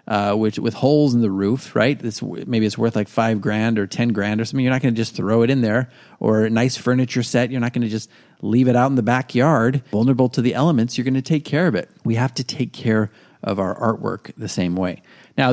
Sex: male